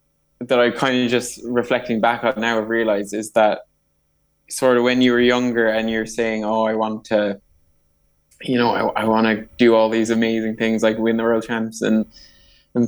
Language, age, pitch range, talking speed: English, 20-39, 105-115 Hz, 200 wpm